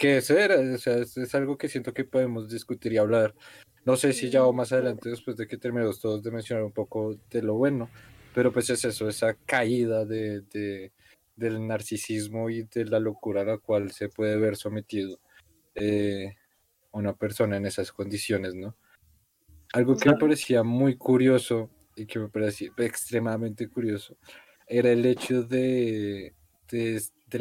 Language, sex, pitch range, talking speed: Spanish, male, 105-120 Hz, 170 wpm